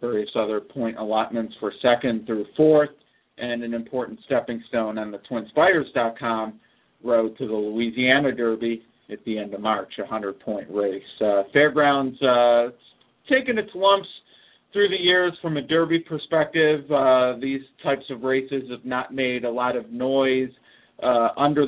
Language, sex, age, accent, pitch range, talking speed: English, male, 40-59, American, 110-135 Hz, 160 wpm